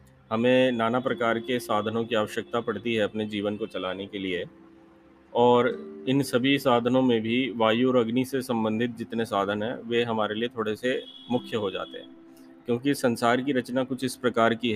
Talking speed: 185 wpm